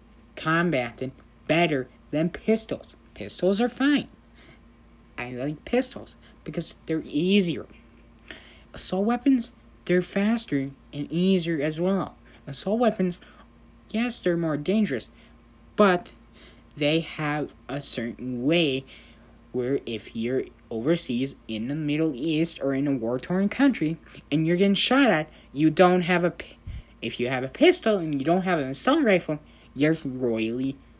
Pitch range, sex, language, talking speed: 125-195 Hz, male, English, 135 wpm